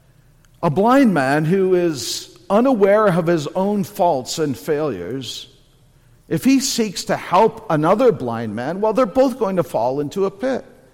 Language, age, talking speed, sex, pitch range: English, 50-69, 160 wpm, male, 140-215 Hz